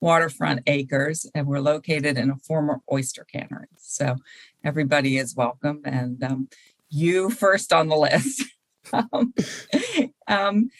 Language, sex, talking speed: English, female, 130 wpm